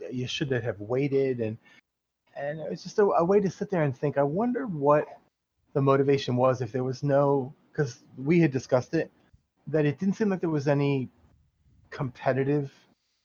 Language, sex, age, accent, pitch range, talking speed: English, male, 30-49, American, 125-150 Hz, 185 wpm